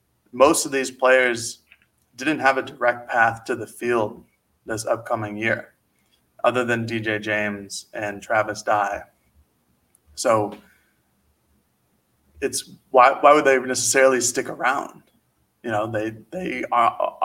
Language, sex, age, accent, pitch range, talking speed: English, male, 20-39, American, 105-120 Hz, 125 wpm